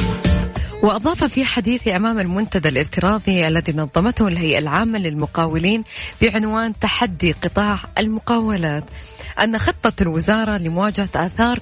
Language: Arabic